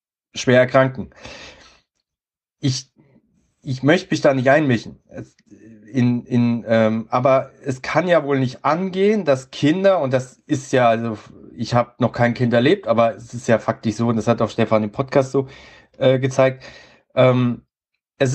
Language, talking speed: German, 155 wpm